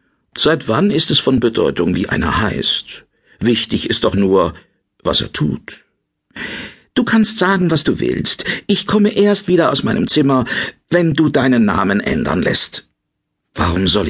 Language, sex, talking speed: German, male, 160 wpm